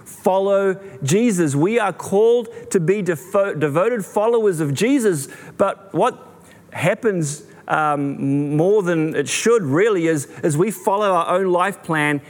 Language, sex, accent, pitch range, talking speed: English, male, Australian, 150-195 Hz, 135 wpm